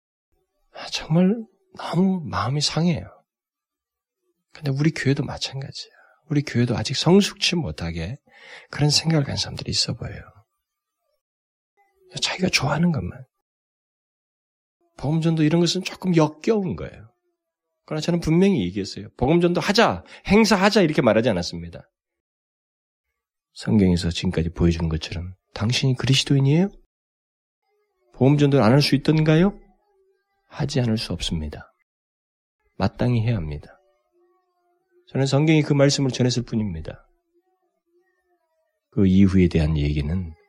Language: Korean